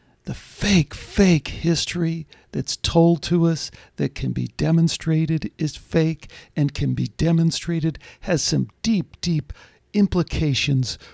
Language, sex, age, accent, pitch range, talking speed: English, male, 60-79, American, 125-165 Hz, 125 wpm